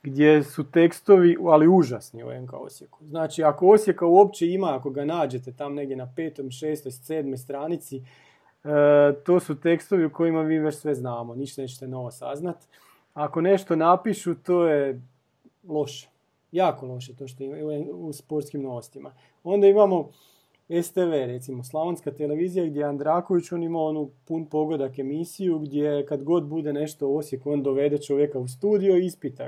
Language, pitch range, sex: Croatian, 145-180 Hz, male